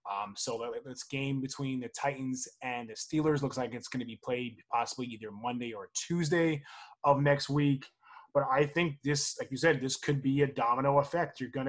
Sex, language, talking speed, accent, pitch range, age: male, English, 205 wpm, American, 130-155 Hz, 20-39